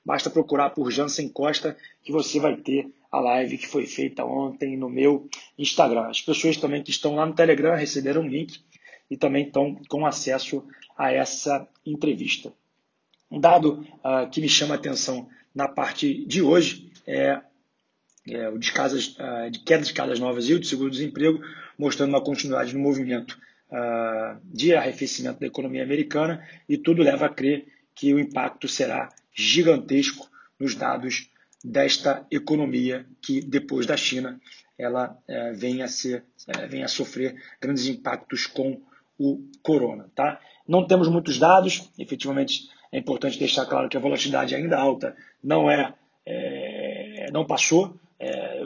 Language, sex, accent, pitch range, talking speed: Portuguese, male, Brazilian, 135-160 Hz, 160 wpm